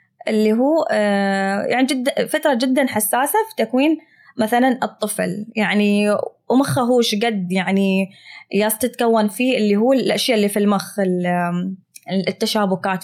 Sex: female